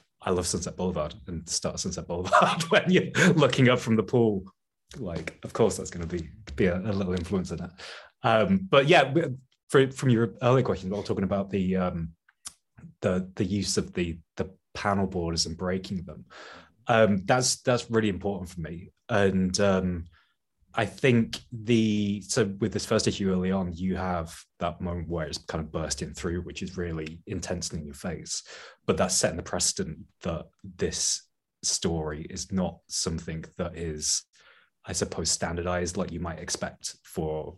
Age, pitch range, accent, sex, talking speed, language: 20-39, 85-105 Hz, British, male, 175 wpm, English